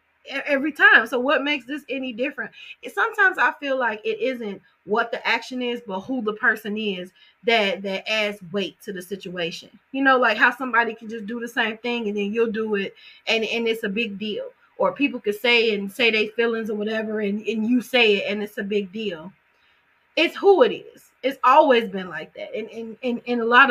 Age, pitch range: 20-39, 205-250 Hz